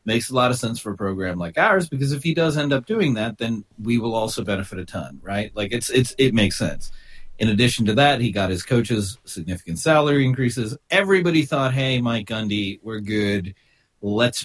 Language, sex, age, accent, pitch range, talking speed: English, male, 40-59, American, 105-145 Hz, 210 wpm